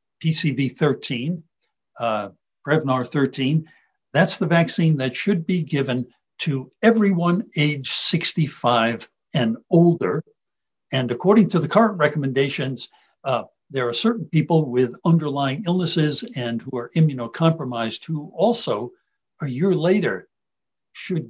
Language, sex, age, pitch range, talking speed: English, male, 60-79, 130-175 Hz, 115 wpm